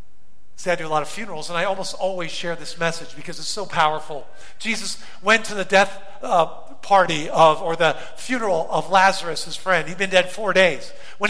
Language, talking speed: English, 200 wpm